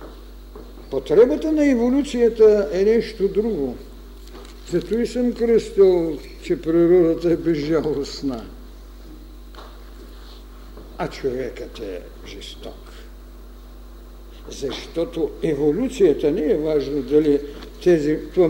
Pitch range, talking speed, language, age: 155-230 Hz, 80 wpm, Bulgarian, 60-79